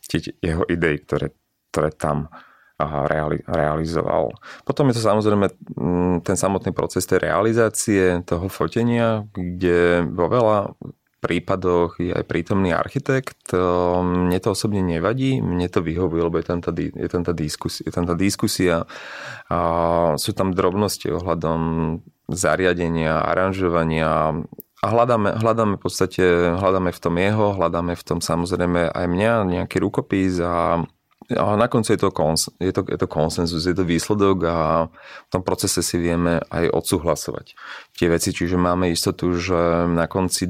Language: Slovak